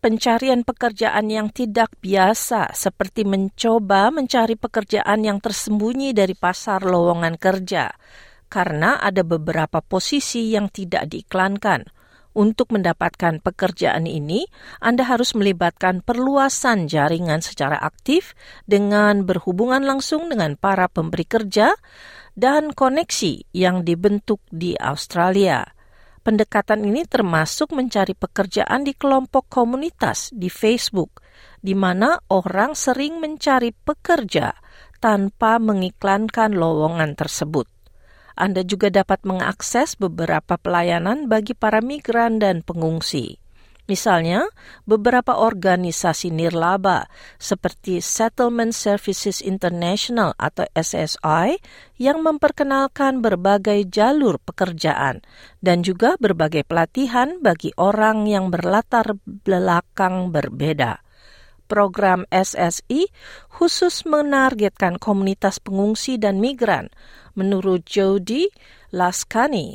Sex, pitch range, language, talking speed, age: female, 180-235 Hz, Indonesian, 95 wpm, 40-59